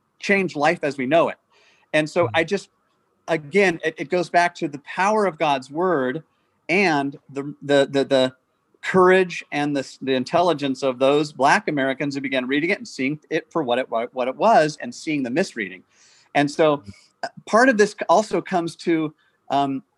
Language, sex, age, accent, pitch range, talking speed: English, male, 40-59, American, 140-175 Hz, 185 wpm